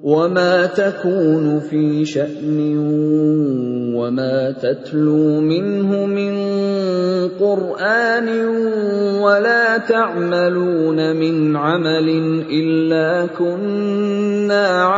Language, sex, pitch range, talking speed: Indonesian, male, 160-200 Hz, 60 wpm